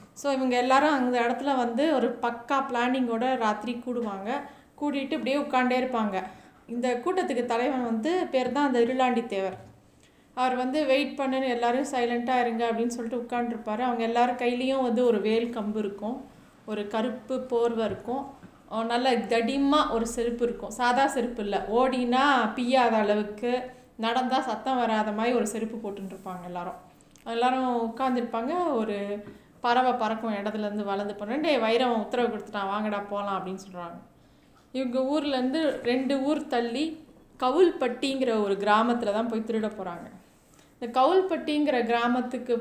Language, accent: Tamil, native